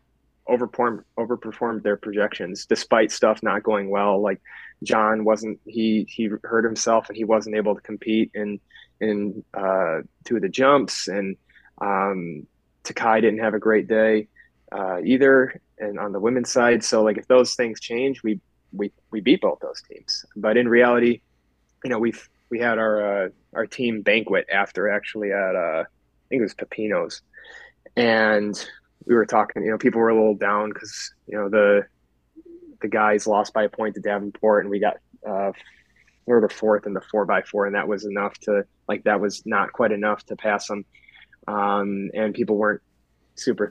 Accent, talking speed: American, 180 wpm